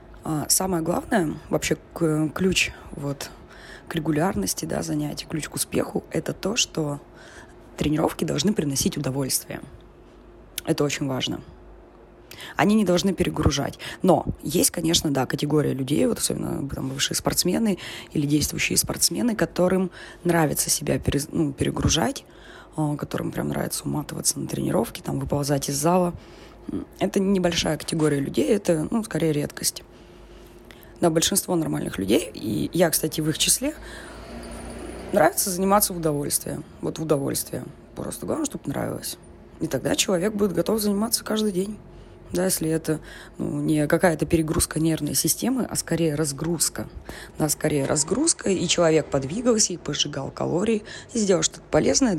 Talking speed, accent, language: 135 wpm, native, Russian